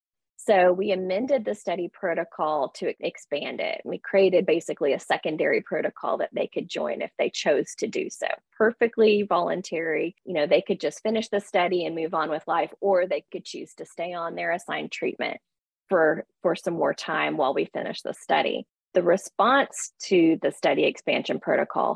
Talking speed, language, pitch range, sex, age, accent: 185 wpm, English, 180-225 Hz, female, 20-39, American